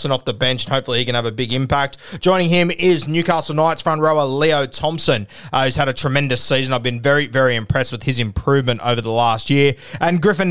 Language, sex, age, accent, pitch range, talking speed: English, male, 20-39, Australian, 135-170 Hz, 230 wpm